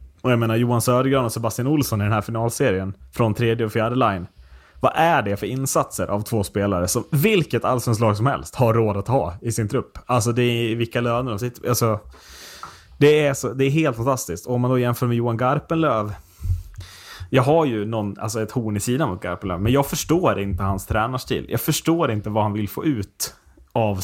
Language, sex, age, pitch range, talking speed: Swedish, male, 20-39, 105-130 Hz, 215 wpm